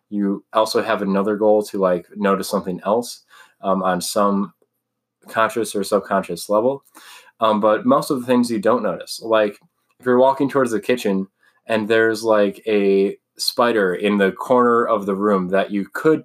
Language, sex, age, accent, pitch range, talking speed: English, male, 20-39, American, 100-115 Hz, 175 wpm